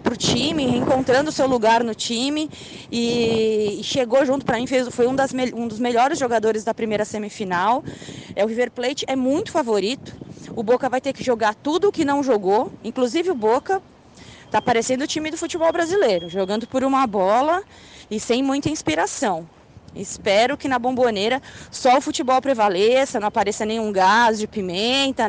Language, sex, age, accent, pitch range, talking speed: Portuguese, female, 20-39, Brazilian, 205-260 Hz, 175 wpm